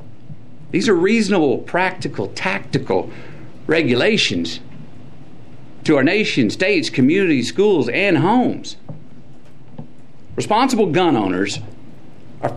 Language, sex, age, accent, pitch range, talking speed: English, male, 50-69, American, 120-145 Hz, 85 wpm